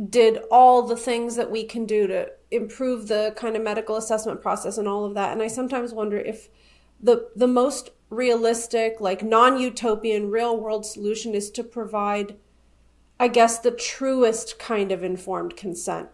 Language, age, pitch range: English, 30-49, 205-240 Hz